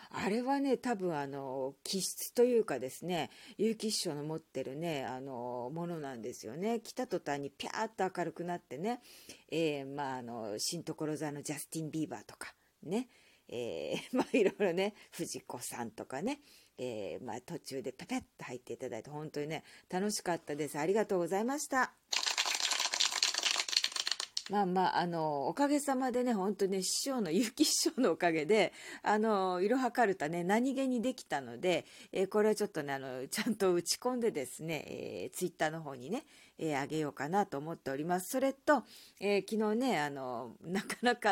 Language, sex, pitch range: Japanese, female, 145-235 Hz